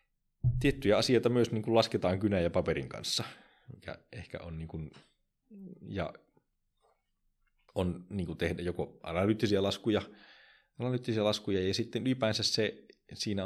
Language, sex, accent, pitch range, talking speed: Finnish, male, native, 85-115 Hz, 130 wpm